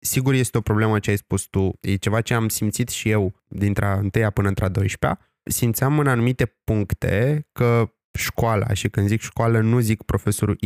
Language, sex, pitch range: Romanian, male, 105-130 Hz